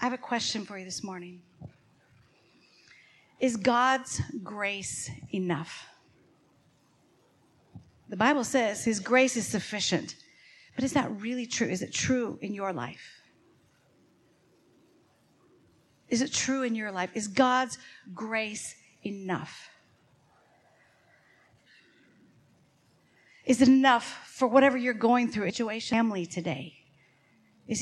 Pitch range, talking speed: 200-255 Hz, 110 wpm